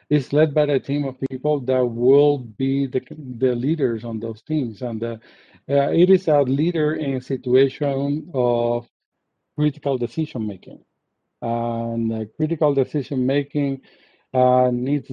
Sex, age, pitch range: male, 50-69, 120-140 Hz